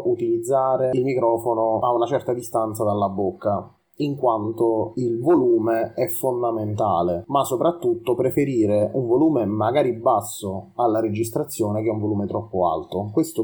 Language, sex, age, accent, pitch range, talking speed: Italian, male, 30-49, native, 105-135 Hz, 135 wpm